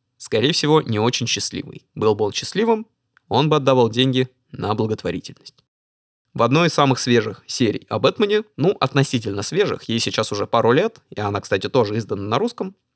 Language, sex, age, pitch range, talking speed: Russian, male, 20-39, 110-160 Hz, 170 wpm